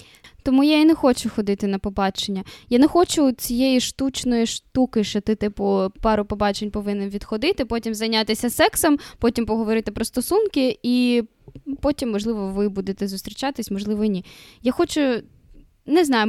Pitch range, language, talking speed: 210-265 Hz, Ukrainian, 145 wpm